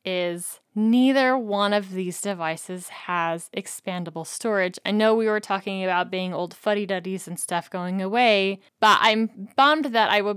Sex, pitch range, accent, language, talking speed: female, 180-210 Hz, American, English, 160 wpm